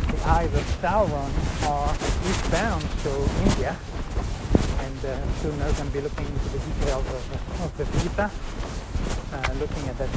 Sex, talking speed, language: male, 155 wpm, English